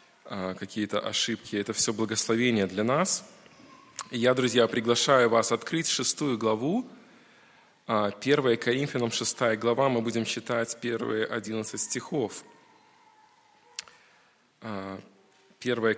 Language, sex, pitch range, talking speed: Russian, male, 110-140 Hz, 100 wpm